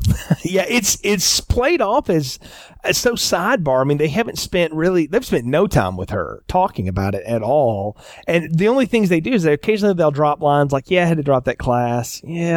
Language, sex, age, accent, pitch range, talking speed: English, male, 40-59, American, 120-165 Hz, 225 wpm